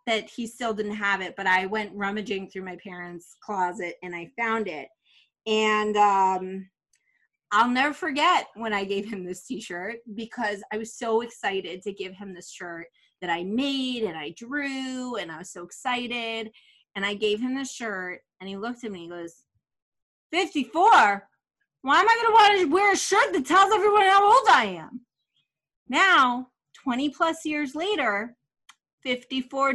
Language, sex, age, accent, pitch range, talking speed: English, female, 30-49, American, 195-275 Hz, 175 wpm